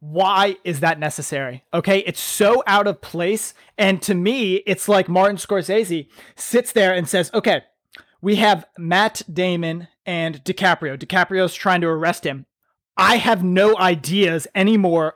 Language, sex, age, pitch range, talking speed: English, male, 20-39, 170-215 Hz, 150 wpm